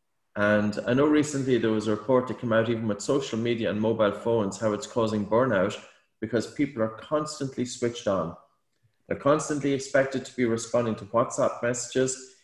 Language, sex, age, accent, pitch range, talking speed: English, male, 30-49, Irish, 110-130 Hz, 180 wpm